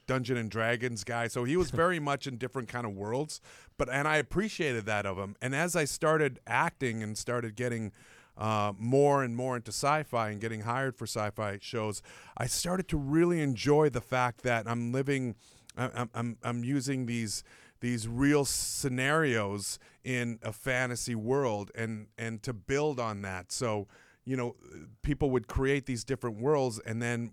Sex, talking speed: male, 175 wpm